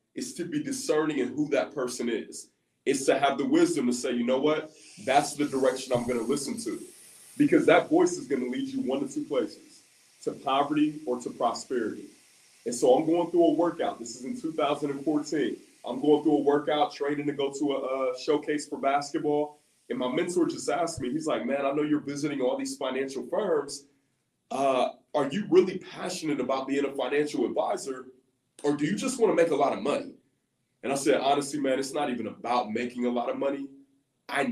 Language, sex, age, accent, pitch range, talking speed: English, male, 20-39, American, 130-180 Hz, 210 wpm